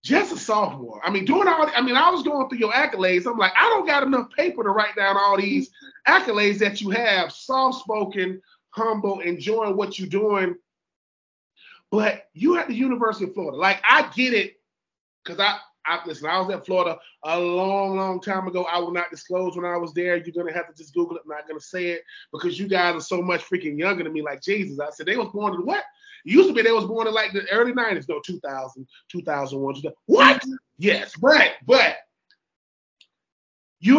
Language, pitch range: English, 180-235 Hz